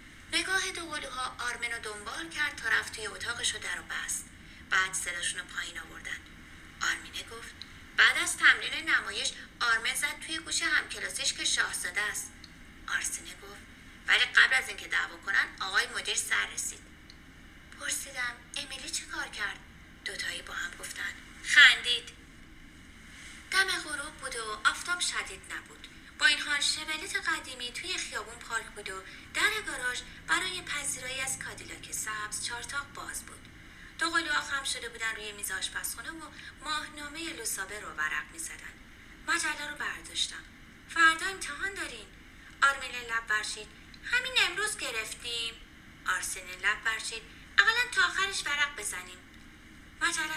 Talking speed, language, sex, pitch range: 135 wpm, Persian, female, 230-330 Hz